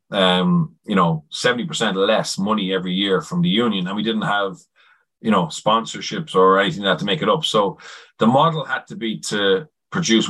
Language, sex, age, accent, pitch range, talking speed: English, male, 30-49, Irish, 95-135 Hz, 190 wpm